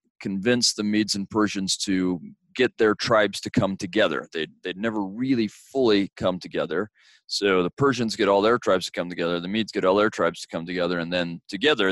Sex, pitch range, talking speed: male, 85-100 Hz, 205 wpm